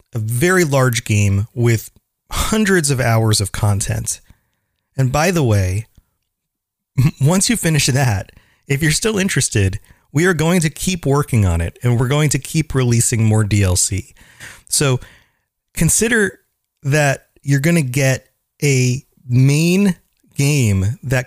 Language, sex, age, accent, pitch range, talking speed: English, male, 30-49, American, 105-145 Hz, 140 wpm